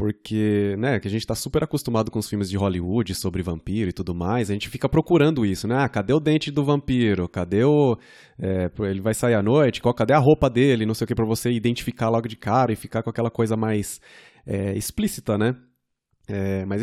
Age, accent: 20-39, Brazilian